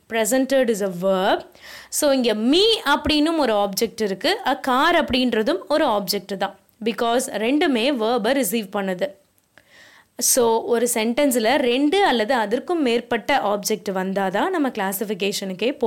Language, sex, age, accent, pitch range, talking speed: Tamil, female, 20-39, native, 205-275 Hz, 80 wpm